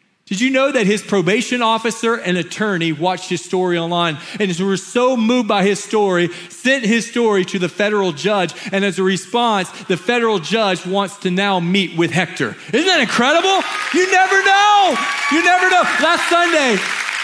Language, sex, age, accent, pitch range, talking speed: English, male, 40-59, American, 195-275 Hz, 180 wpm